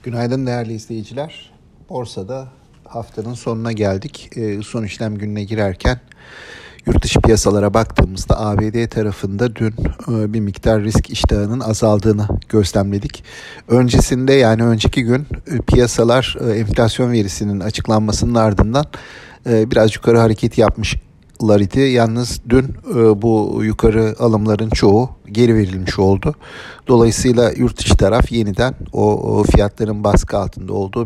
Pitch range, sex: 105-120 Hz, male